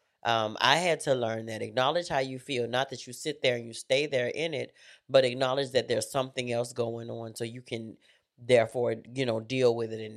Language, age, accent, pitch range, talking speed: English, 30-49, American, 110-135 Hz, 230 wpm